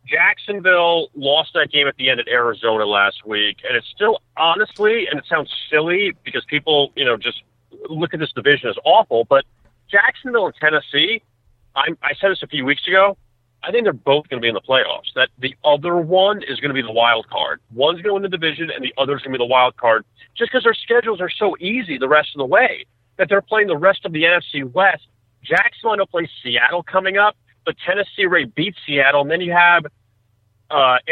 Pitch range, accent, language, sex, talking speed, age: 120-185 Hz, American, English, male, 220 wpm, 40-59